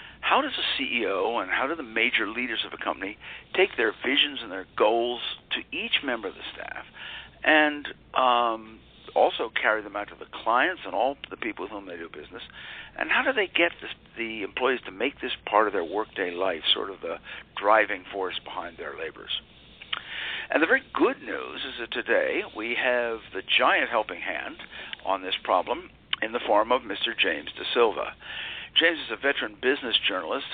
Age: 60-79